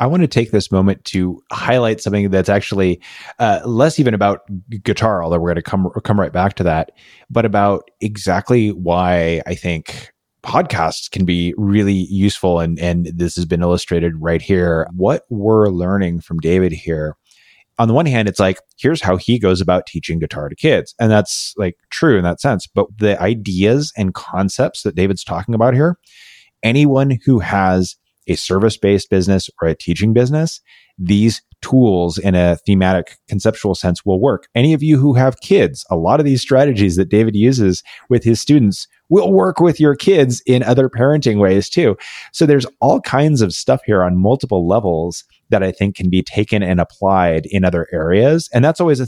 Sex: male